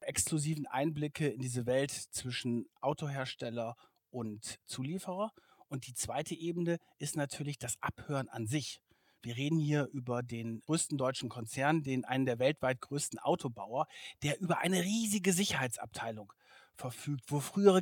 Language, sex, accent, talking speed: German, male, German, 140 wpm